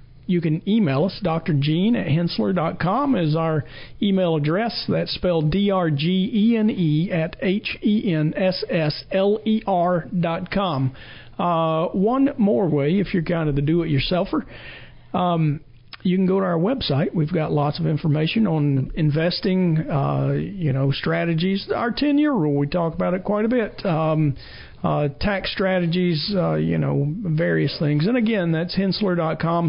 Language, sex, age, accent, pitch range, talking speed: English, male, 40-59, American, 150-185 Hz, 135 wpm